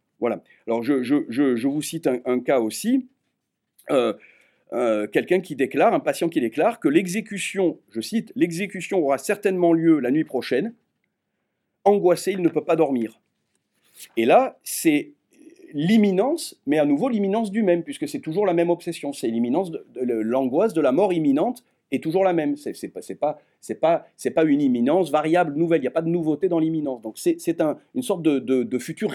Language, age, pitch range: French, 50-69, 135-230 Hz